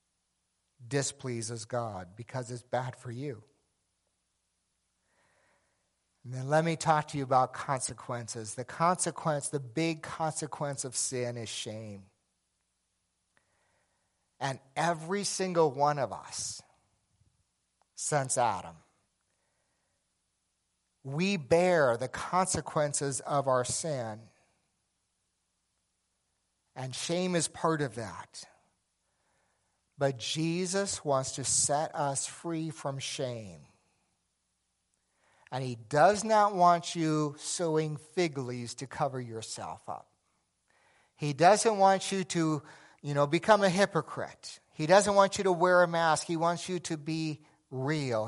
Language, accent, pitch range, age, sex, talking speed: English, American, 120-160 Hz, 50-69, male, 115 wpm